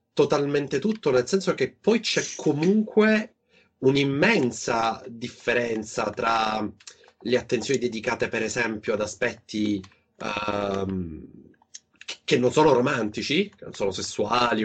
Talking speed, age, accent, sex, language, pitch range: 110 wpm, 30-49, native, male, Italian, 110-135 Hz